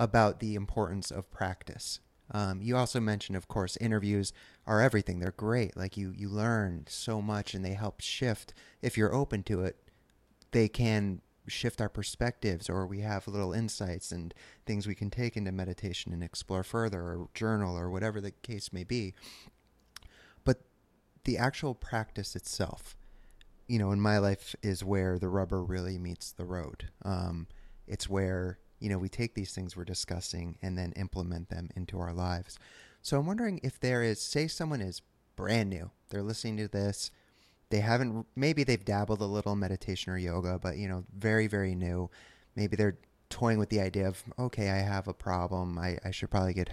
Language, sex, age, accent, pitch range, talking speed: English, male, 30-49, American, 95-110 Hz, 185 wpm